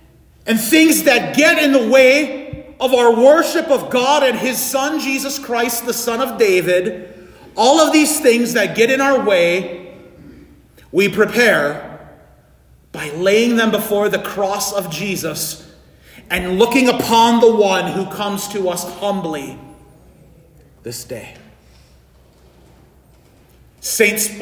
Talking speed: 130 wpm